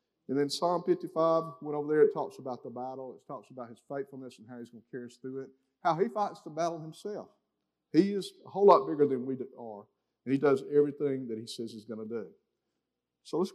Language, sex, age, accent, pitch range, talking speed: English, male, 50-69, American, 120-160 Hz, 240 wpm